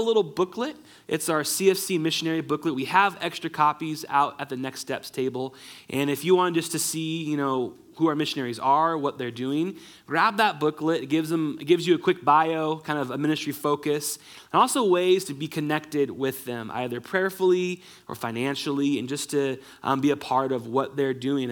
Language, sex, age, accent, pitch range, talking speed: English, male, 20-39, American, 140-185 Hz, 200 wpm